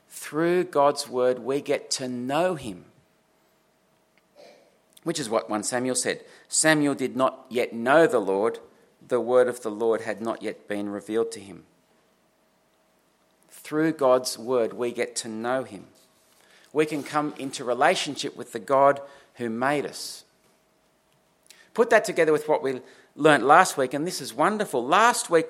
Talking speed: 160 wpm